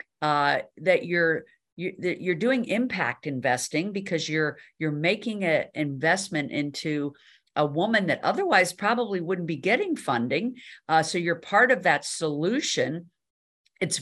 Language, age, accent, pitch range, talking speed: English, 50-69, American, 145-185 Hz, 135 wpm